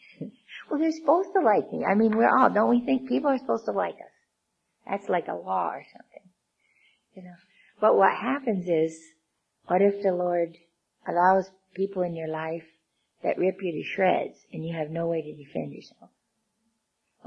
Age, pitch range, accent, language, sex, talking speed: 50-69, 155-190 Hz, American, English, female, 190 wpm